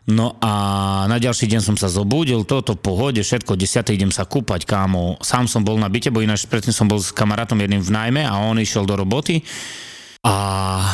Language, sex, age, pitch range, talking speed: Slovak, male, 30-49, 100-120 Hz, 205 wpm